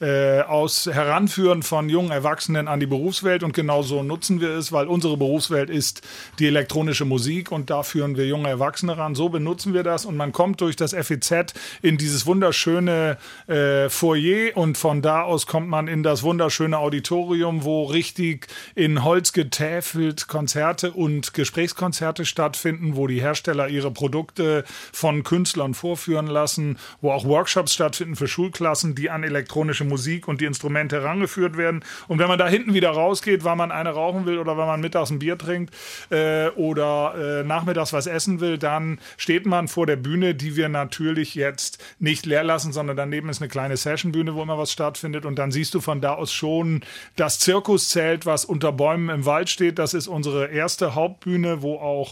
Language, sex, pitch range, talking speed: German, male, 145-170 Hz, 180 wpm